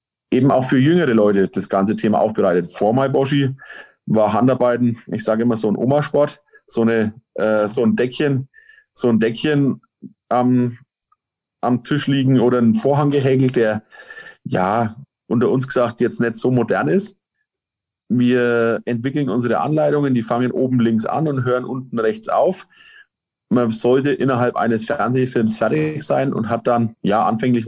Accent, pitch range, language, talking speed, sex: German, 110-135 Hz, German, 160 wpm, male